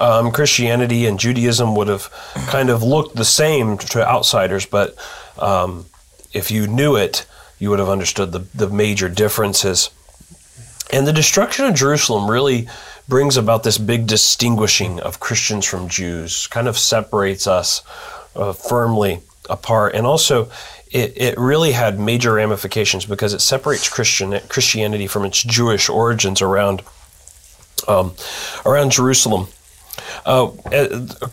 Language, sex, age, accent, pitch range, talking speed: English, male, 30-49, American, 105-130 Hz, 140 wpm